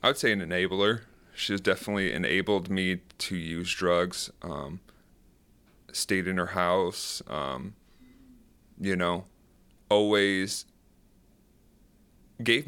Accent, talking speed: American, 105 wpm